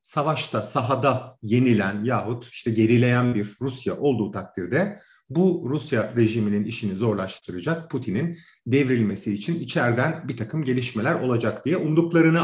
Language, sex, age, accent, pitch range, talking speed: Turkish, male, 40-59, native, 110-160 Hz, 120 wpm